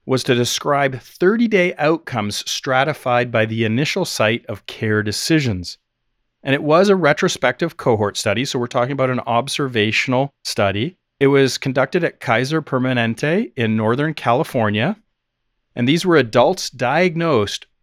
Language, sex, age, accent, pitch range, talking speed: English, male, 40-59, American, 115-155 Hz, 140 wpm